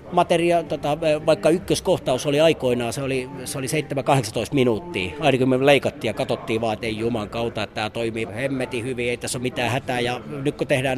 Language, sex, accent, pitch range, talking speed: Finnish, male, native, 120-155 Hz, 180 wpm